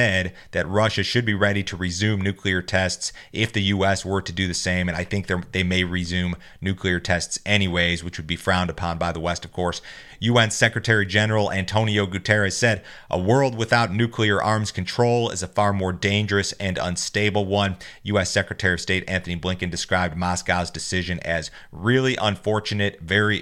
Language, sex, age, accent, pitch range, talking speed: English, male, 30-49, American, 90-105 Hz, 175 wpm